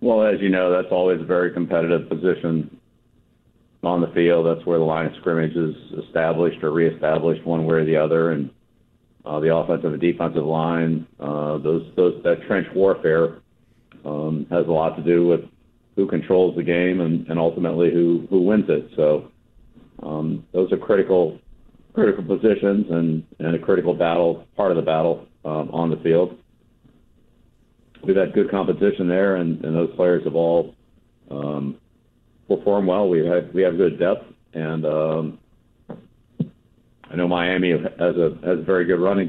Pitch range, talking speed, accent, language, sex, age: 80-90 Hz, 170 wpm, American, English, male, 40-59